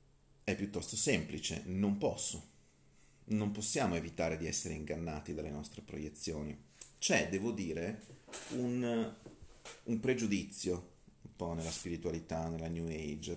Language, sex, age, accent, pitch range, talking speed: Italian, male, 40-59, native, 80-115 Hz, 120 wpm